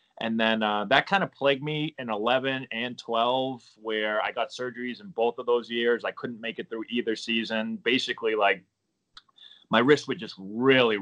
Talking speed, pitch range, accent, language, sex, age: 190 wpm, 110-135 Hz, American, English, male, 20-39